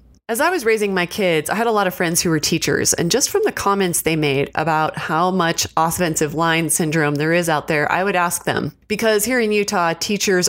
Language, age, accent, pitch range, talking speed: English, 30-49, American, 160-190 Hz, 235 wpm